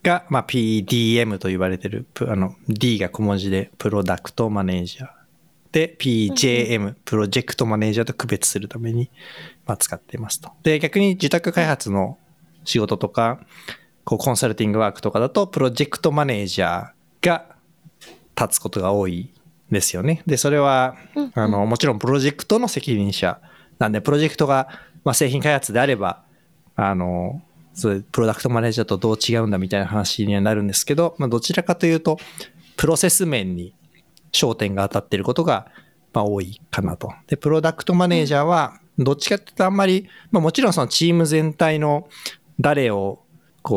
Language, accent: Japanese, native